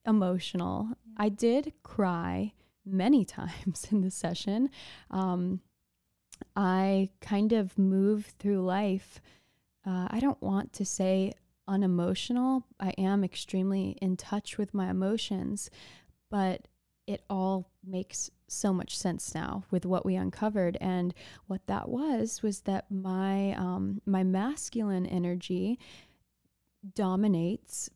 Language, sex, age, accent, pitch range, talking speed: English, female, 20-39, American, 185-210 Hz, 120 wpm